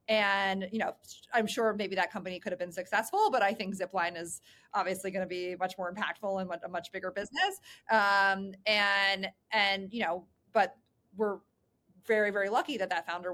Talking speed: 190 wpm